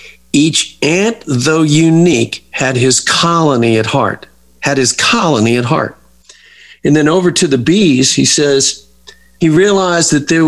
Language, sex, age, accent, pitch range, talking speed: English, male, 50-69, American, 125-160 Hz, 150 wpm